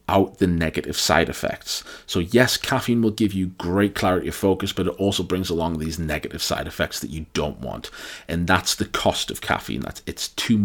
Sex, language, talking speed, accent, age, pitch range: male, English, 210 wpm, British, 30-49, 80-95 Hz